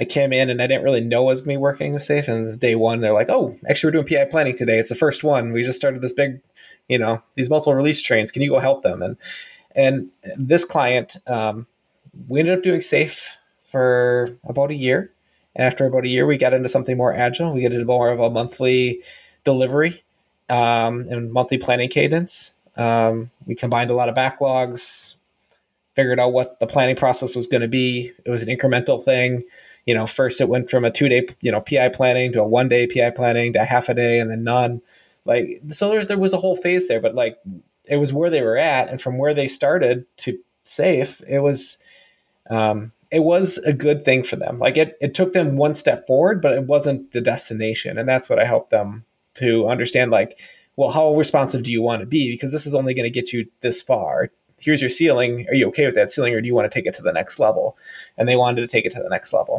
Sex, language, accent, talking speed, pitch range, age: male, English, American, 240 wpm, 120-140 Hz, 20-39